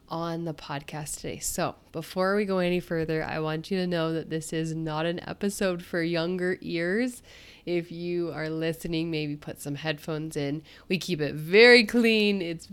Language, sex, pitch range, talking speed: English, female, 155-195 Hz, 185 wpm